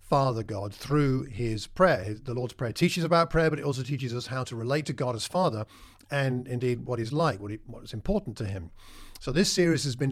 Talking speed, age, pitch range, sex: 230 wpm, 50-69, 110-150 Hz, male